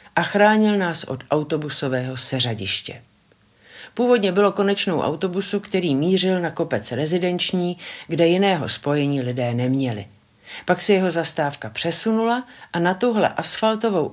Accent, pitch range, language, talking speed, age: native, 140-195 Hz, Czech, 125 wpm, 50-69